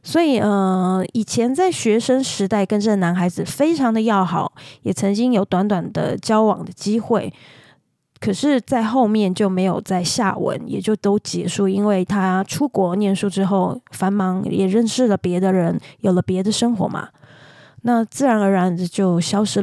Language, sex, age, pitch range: Chinese, female, 20-39, 190-225 Hz